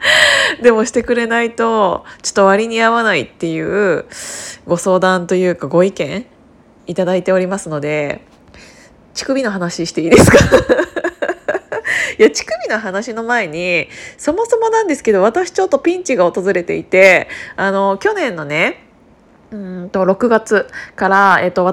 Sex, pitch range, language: female, 185-260 Hz, Japanese